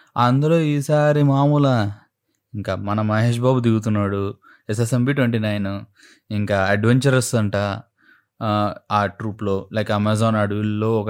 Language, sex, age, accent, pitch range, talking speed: Telugu, male, 20-39, native, 100-120 Hz, 110 wpm